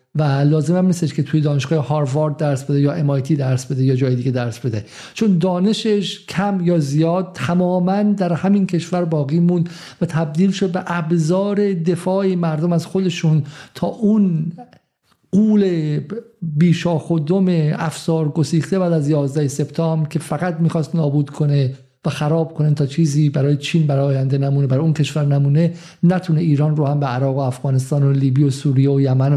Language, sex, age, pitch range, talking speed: Persian, male, 50-69, 140-170 Hz, 170 wpm